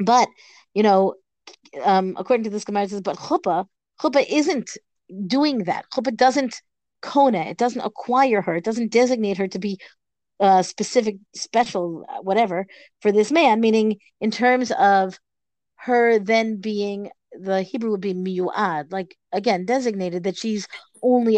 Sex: female